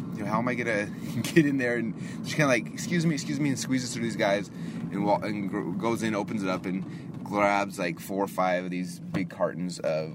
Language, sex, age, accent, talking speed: English, male, 20-39, American, 255 wpm